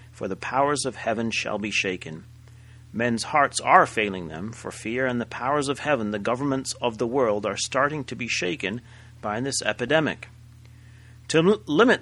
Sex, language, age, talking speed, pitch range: male, English, 40-59, 175 wpm, 105-125 Hz